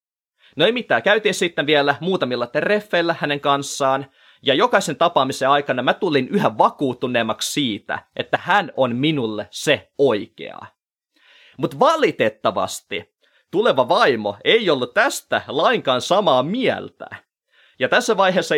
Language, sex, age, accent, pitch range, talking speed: Finnish, male, 30-49, native, 115-180 Hz, 125 wpm